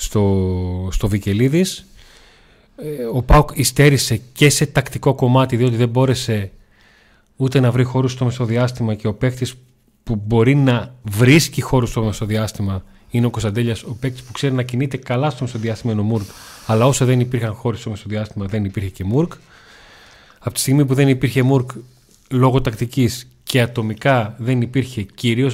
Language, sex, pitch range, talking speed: Greek, male, 110-135 Hz, 155 wpm